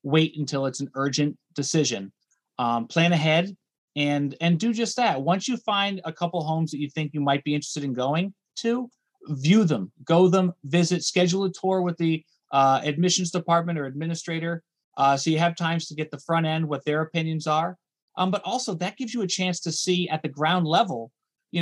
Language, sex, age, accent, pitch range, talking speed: English, male, 30-49, American, 145-180 Hz, 205 wpm